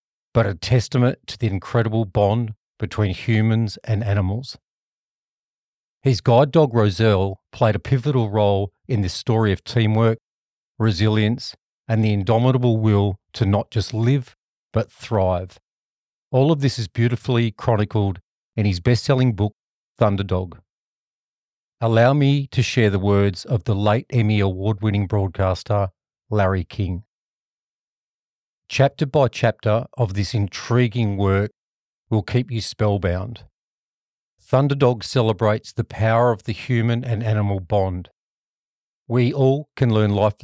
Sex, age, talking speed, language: male, 40-59, 130 wpm, English